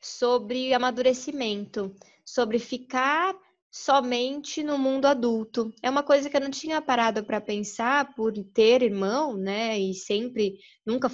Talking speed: 135 wpm